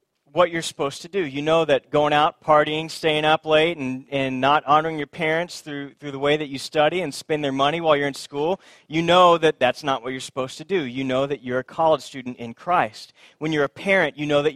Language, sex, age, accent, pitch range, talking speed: English, male, 30-49, American, 140-170 Hz, 250 wpm